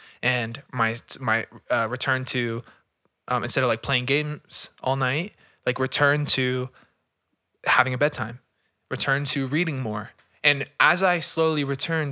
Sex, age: male, 20-39